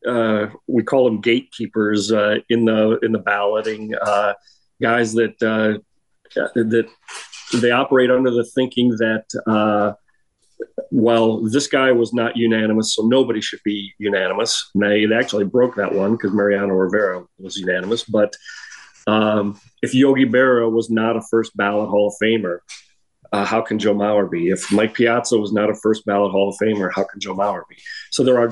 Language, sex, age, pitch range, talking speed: English, male, 40-59, 100-115 Hz, 175 wpm